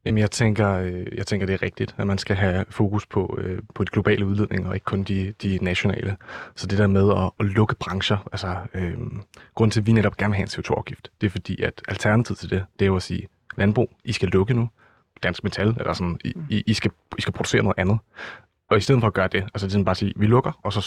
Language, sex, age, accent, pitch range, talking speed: Danish, male, 30-49, native, 95-110 Hz, 255 wpm